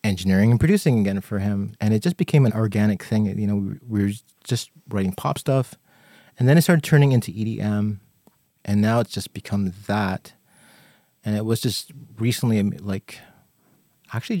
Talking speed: 170 wpm